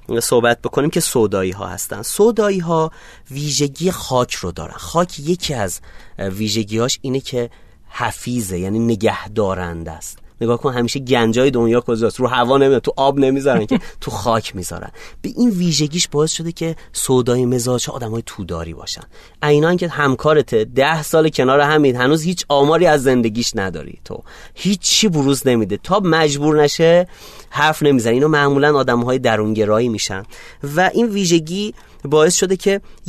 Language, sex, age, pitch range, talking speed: Persian, male, 30-49, 110-150 Hz, 150 wpm